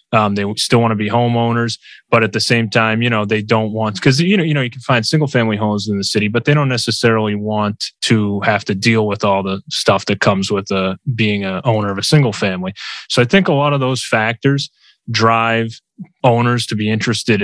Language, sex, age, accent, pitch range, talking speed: English, male, 20-39, American, 105-125 Hz, 240 wpm